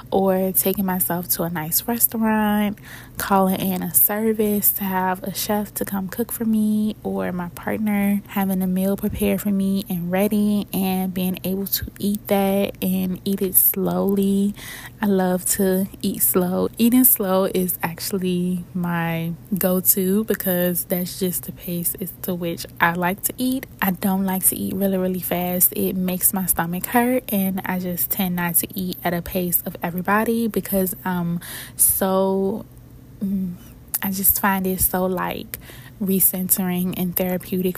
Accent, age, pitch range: American, 20-39, 185-200 Hz